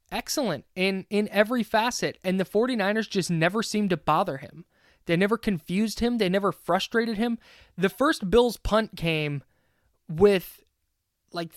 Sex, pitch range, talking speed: male, 155-210 Hz, 150 wpm